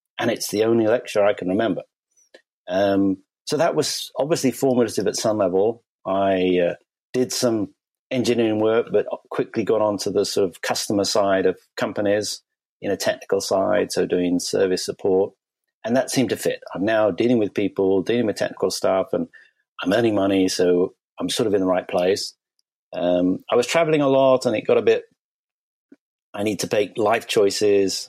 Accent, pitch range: British, 95-120 Hz